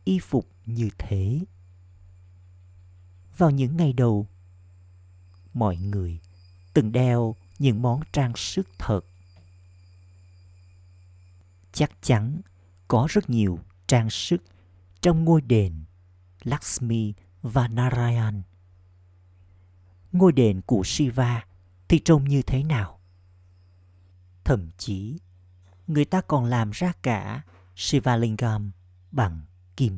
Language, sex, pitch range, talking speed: Vietnamese, male, 90-120 Hz, 100 wpm